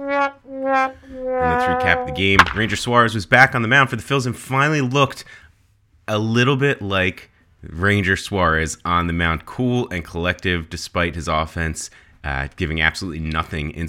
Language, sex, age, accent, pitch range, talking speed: English, male, 30-49, American, 85-100 Hz, 165 wpm